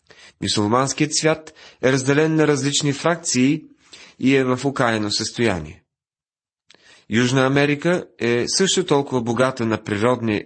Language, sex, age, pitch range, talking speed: Bulgarian, male, 30-49, 105-145 Hz, 115 wpm